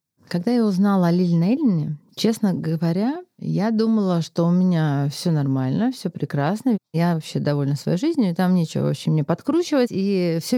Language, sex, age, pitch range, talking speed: Russian, female, 30-49, 165-230 Hz, 160 wpm